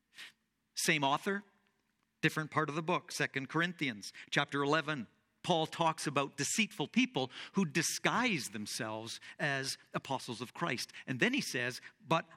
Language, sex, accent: English, male, American